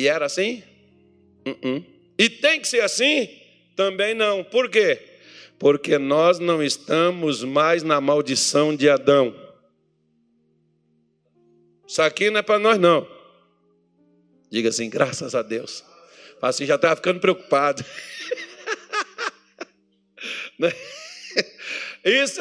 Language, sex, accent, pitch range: Portuguese, male, Brazilian, 135-195 Hz